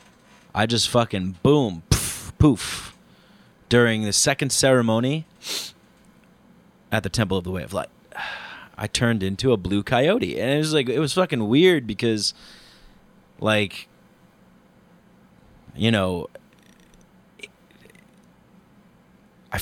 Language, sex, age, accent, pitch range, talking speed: English, male, 30-49, American, 105-135 Hz, 115 wpm